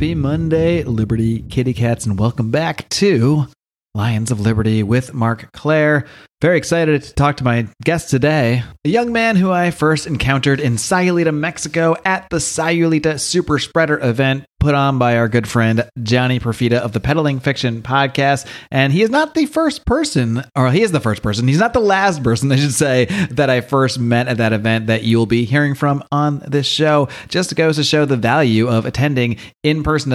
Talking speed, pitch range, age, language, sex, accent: 195 wpm, 120-150 Hz, 30-49, English, male, American